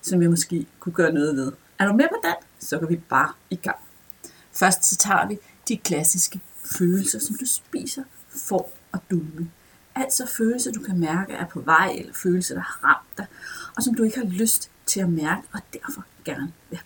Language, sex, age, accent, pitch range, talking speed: Danish, female, 30-49, native, 170-225 Hz, 205 wpm